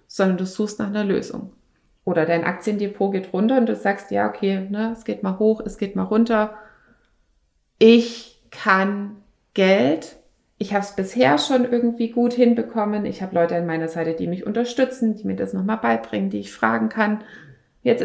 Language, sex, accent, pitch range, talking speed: German, female, German, 185-225 Hz, 185 wpm